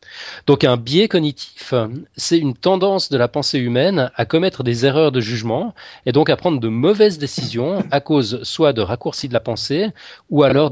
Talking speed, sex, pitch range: 190 wpm, male, 120-150 Hz